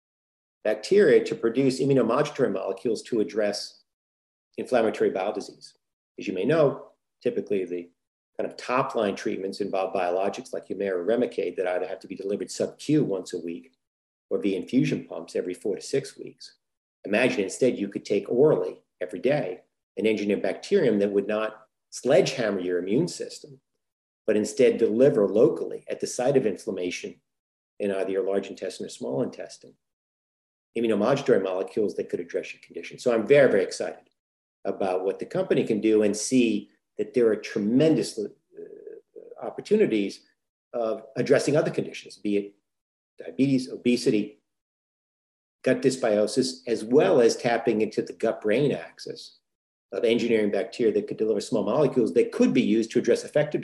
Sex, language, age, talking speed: male, English, 50-69, 155 wpm